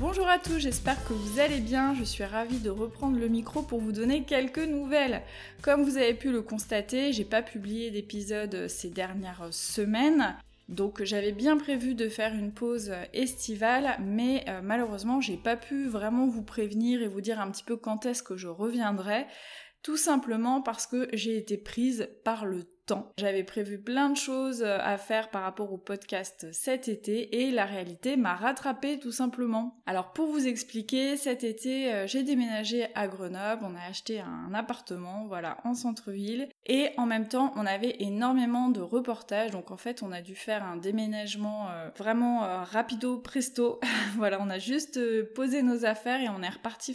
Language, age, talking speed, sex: French, 20-39, 185 wpm, female